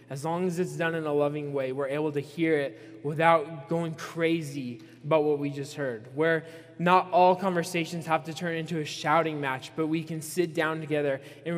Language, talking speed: English, 205 wpm